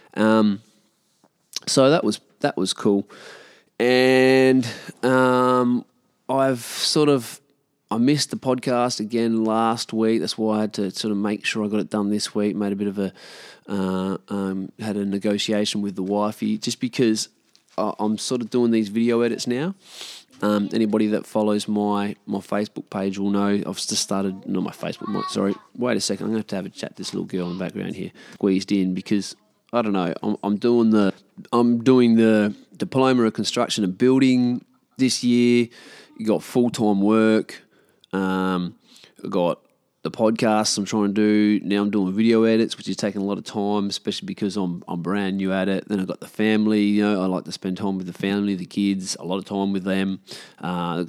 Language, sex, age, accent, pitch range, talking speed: English, male, 20-39, Australian, 100-115 Hz, 200 wpm